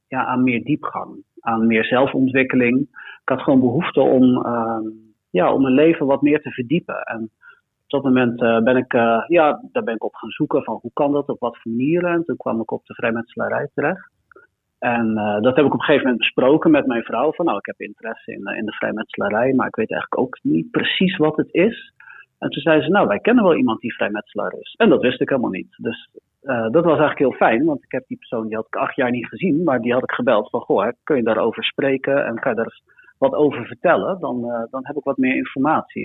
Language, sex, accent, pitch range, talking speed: Dutch, male, Dutch, 115-150 Hz, 245 wpm